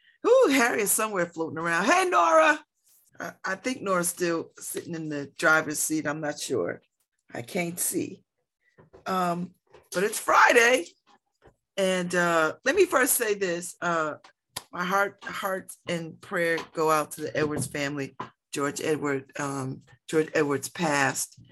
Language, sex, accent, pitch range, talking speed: English, female, American, 140-170 Hz, 150 wpm